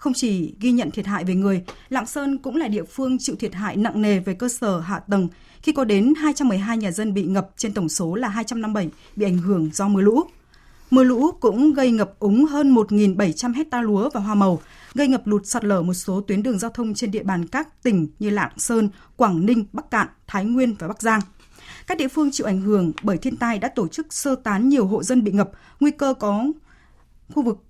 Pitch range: 195-250 Hz